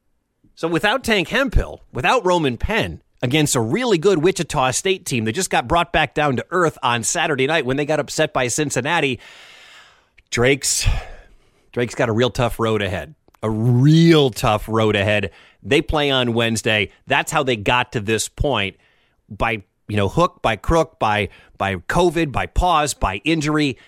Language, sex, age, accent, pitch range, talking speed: English, male, 30-49, American, 105-145 Hz, 170 wpm